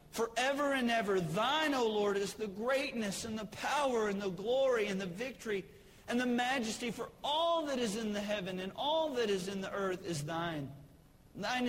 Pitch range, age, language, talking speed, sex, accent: 170-230 Hz, 40-59, English, 200 wpm, male, American